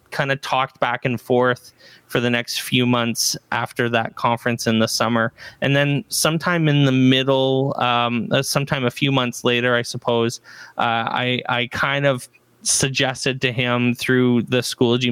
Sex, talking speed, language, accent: male, 165 wpm, English, American